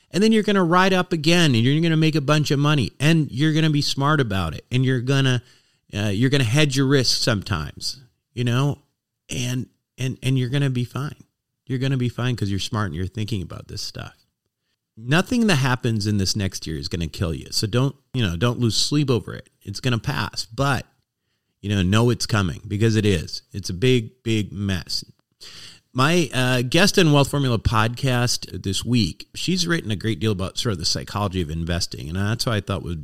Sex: male